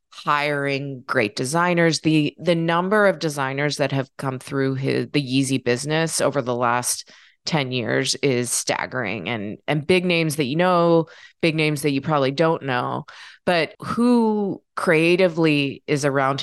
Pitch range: 135-170 Hz